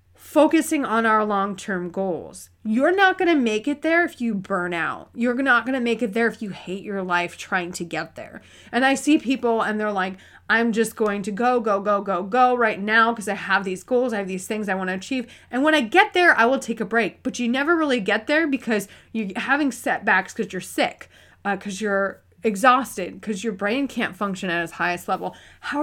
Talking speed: 230 wpm